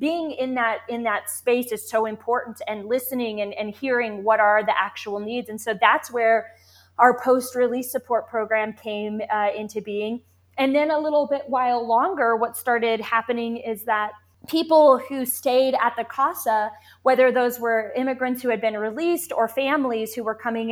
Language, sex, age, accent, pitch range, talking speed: English, female, 20-39, American, 220-265 Hz, 180 wpm